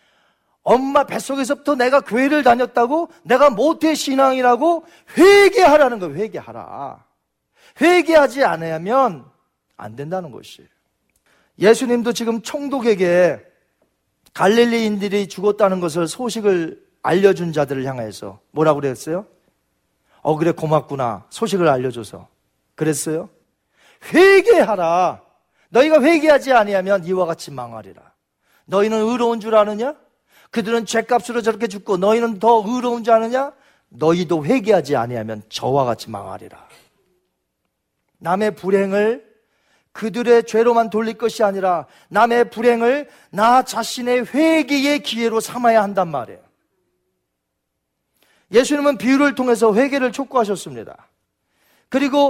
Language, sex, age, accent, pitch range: Korean, male, 40-59, native, 175-250 Hz